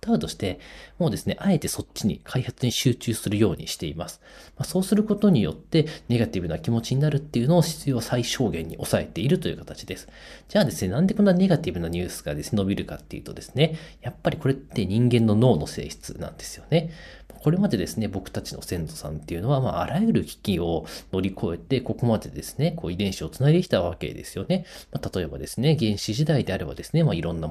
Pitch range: 95-155 Hz